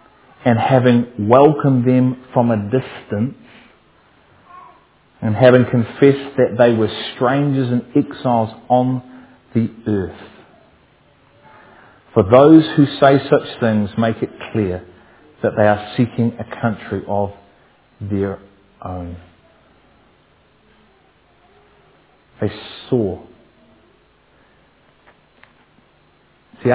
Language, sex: English, male